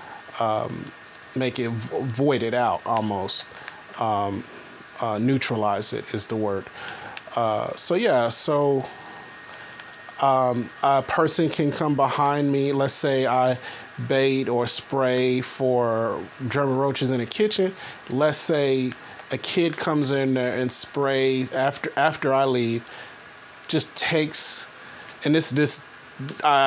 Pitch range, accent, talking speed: 120-140 Hz, American, 130 wpm